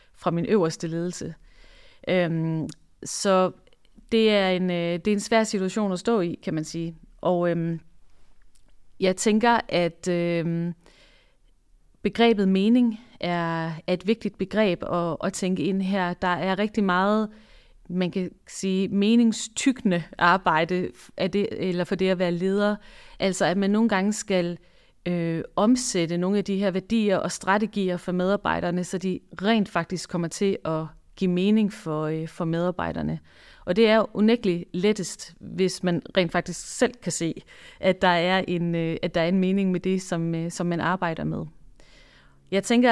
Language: Danish